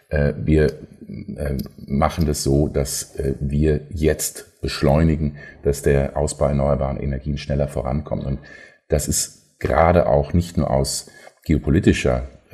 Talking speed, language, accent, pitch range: 115 wpm, German, German, 70-85 Hz